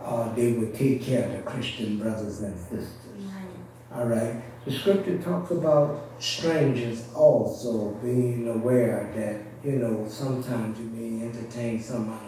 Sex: male